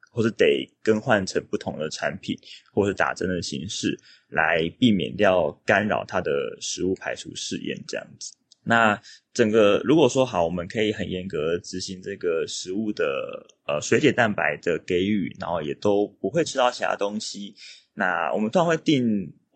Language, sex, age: Chinese, male, 20-39